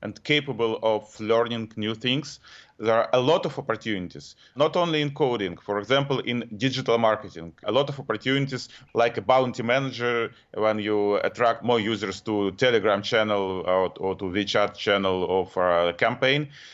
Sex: male